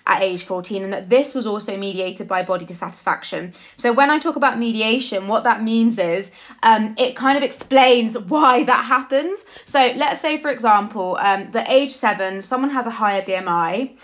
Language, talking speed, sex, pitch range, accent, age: English, 190 wpm, female, 200-255 Hz, British, 20-39